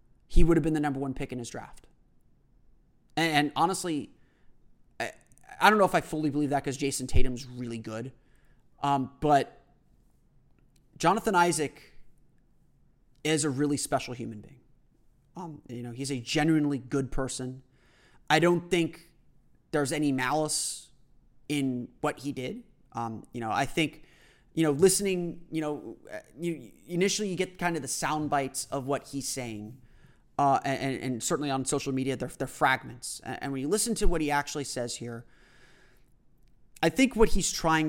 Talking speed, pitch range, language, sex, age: 165 wpm, 130-160 Hz, English, male, 30-49